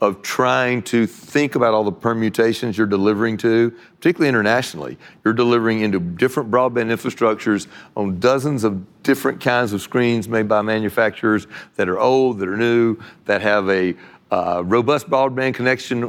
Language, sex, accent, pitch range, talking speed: English, male, American, 105-125 Hz, 155 wpm